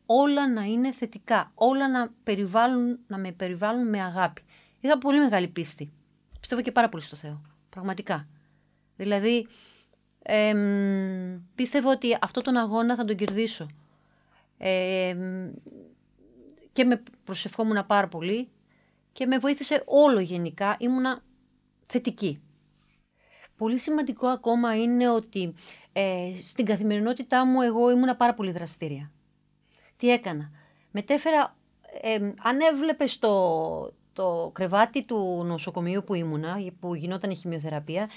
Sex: female